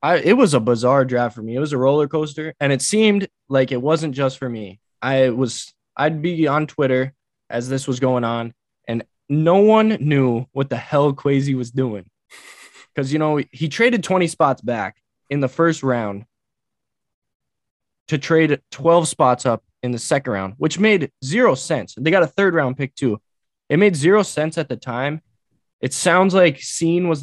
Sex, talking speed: male, 195 wpm